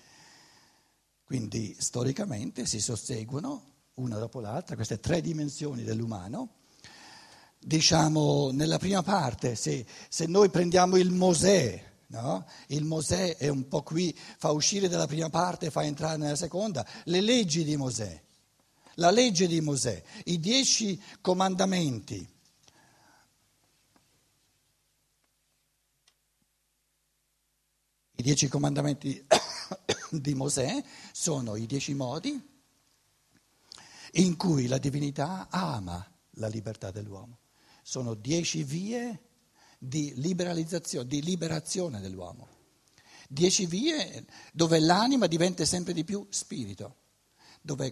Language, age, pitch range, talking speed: Italian, 60-79, 125-175 Hz, 105 wpm